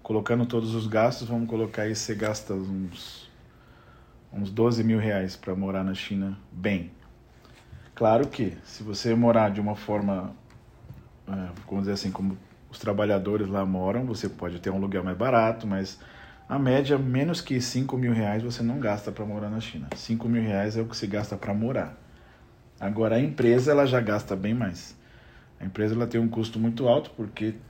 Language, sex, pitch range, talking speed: Portuguese, male, 105-120 Hz, 180 wpm